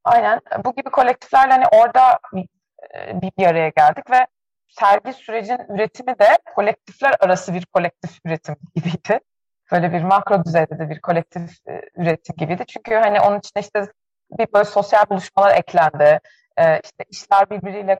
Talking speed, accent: 145 wpm, native